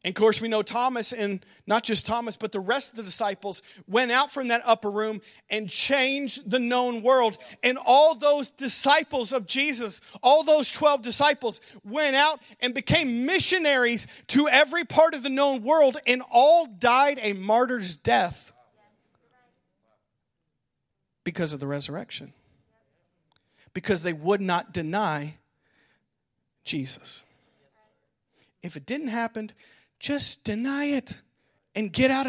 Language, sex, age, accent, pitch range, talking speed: English, male, 40-59, American, 175-255 Hz, 140 wpm